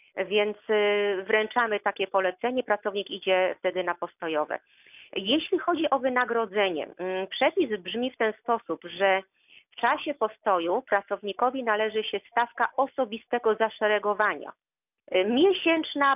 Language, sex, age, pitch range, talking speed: Polish, female, 30-49, 185-230 Hz, 110 wpm